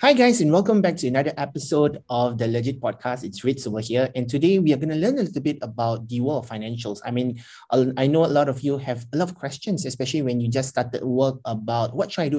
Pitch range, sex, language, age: 120-155 Hz, male, English, 20-39